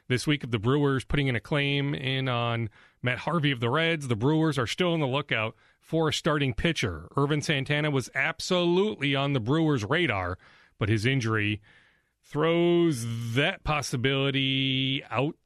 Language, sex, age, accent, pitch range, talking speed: English, male, 30-49, American, 105-145 Hz, 160 wpm